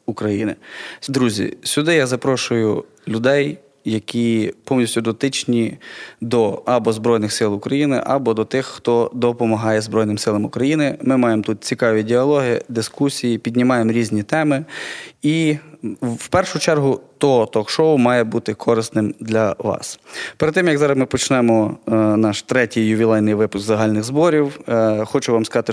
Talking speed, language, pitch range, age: 135 wpm, Ukrainian, 110-135 Hz, 20-39